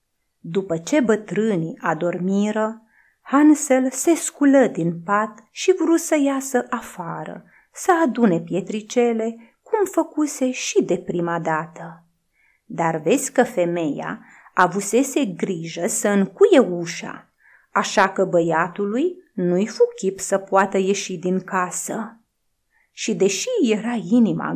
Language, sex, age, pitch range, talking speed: Romanian, female, 30-49, 175-260 Hz, 110 wpm